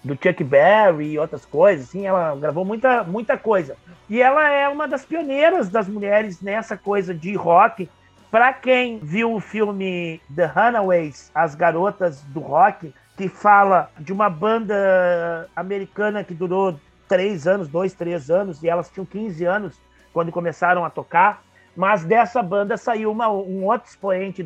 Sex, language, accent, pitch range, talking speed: male, Portuguese, Brazilian, 170-215 Hz, 160 wpm